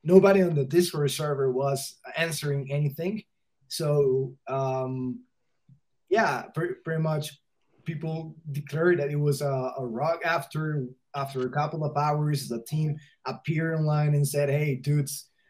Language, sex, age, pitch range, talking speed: English, male, 20-39, 135-155 Hz, 140 wpm